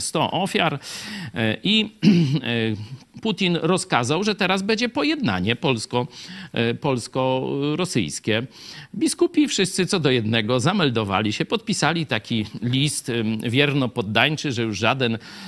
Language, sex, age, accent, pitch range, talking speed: Polish, male, 50-69, native, 115-175 Hz, 105 wpm